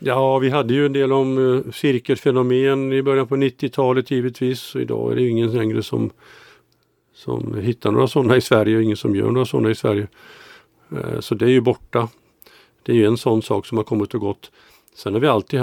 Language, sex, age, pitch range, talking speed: Swedish, male, 50-69, 110-135 Hz, 210 wpm